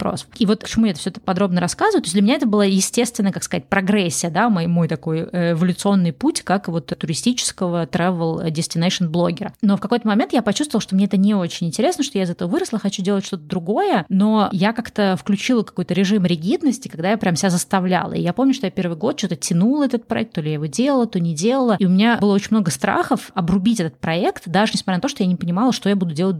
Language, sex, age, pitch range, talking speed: Russian, female, 20-39, 175-215 Hz, 235 wpm